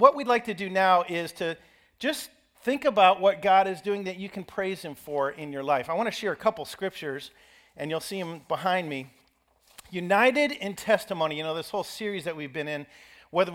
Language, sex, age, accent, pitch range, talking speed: English, male, 50-69, American, 150-195 Hz, 215 wpm